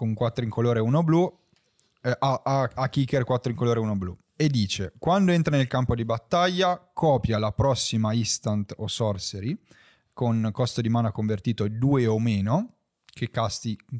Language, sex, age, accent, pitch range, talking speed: Italian, male, 20-39, native, 110-140 Hz, 185 wpm